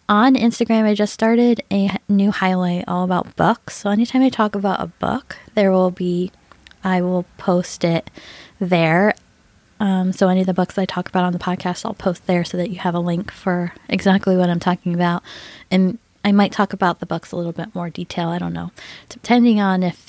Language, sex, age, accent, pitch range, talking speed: English, female, 10-29, American, 180-210 Hz, 210 wpm